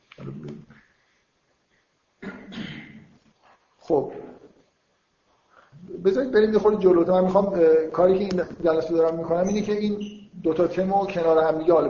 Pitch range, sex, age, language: 145-180 Hz, male, 50-69, Persian